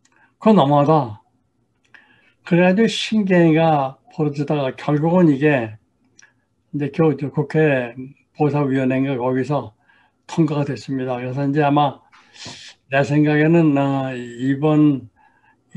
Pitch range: 130-150 Hz